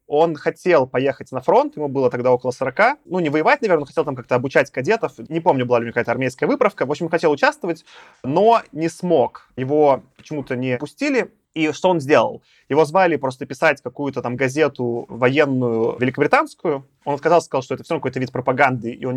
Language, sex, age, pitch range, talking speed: Russian, male, 20-39, 125-160 Hz, 205 wpm